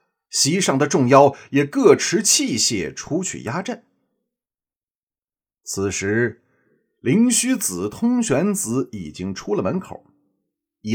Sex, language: male, Chinese